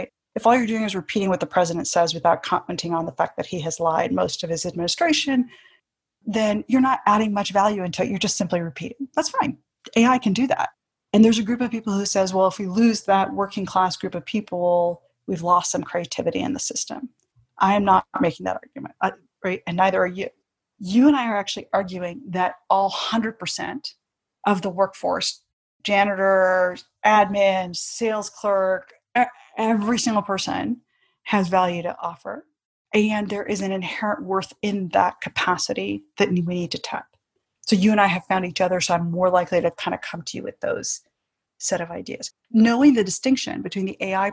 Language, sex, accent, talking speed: English, female, American, 195 wpm